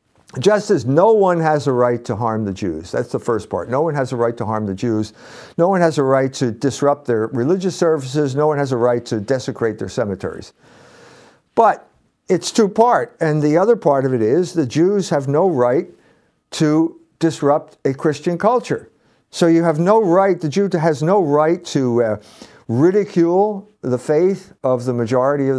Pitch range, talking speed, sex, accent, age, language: 135-185 Hz, 190 wpm, male, American, 50-69, English